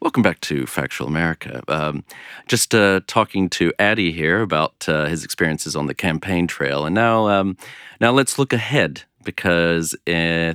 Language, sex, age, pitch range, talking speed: English, male, 40-59, 80-105 Hz, 165 wpm